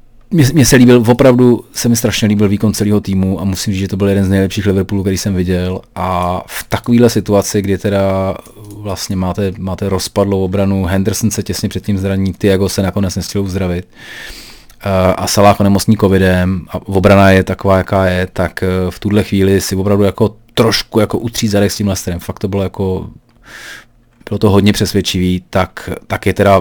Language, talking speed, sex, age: Czech, 185 wpm, male, 30-49